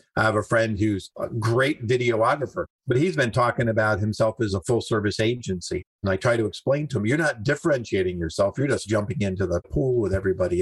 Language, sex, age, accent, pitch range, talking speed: English, male, 50-69, American, 95-115 Hz, 215 wpm